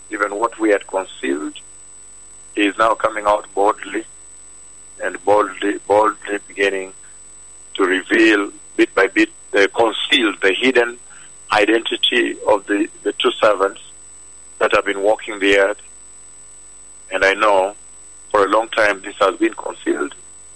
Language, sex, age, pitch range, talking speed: English, male, 50-69, 80-105 Hz, 135 wpm